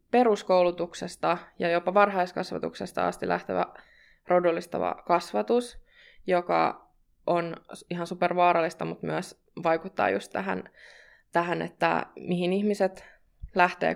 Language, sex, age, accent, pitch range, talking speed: Finnish, female, 20-39, native, 170-215 Hz, 95 wpm